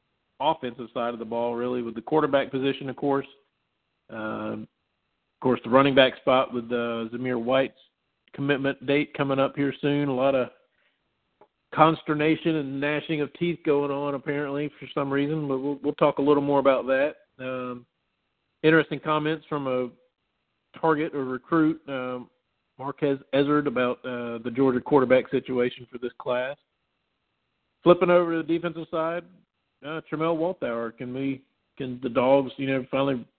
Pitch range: 125-150 Hz